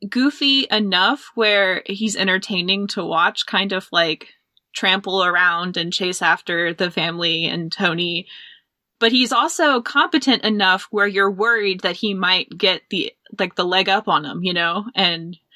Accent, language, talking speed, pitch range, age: American, English, 160 wpm, 180-215 Hz, 20-39